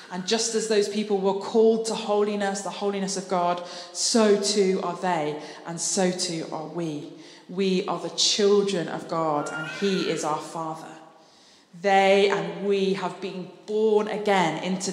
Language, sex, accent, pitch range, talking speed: English, female, British, 170-205 Hz, 165 wpm